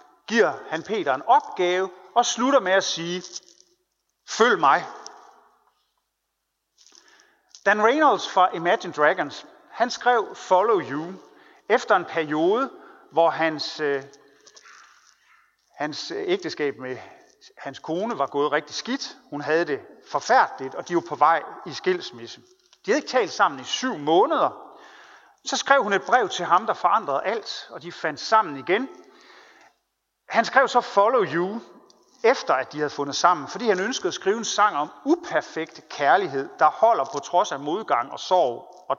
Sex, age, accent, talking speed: male, 40-59, native, 150 wpm